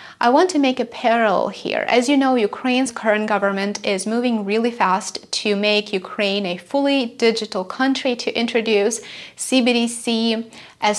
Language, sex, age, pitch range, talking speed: English, female, 20-39, 205-245 Hz, 155 wpm